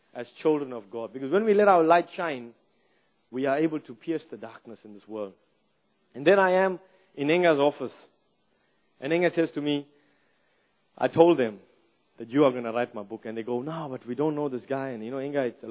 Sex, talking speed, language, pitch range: male, 230 wpm, English, 115-150 Hz